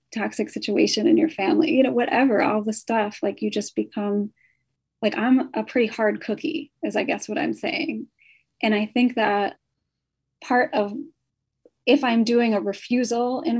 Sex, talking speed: female, 170 wpm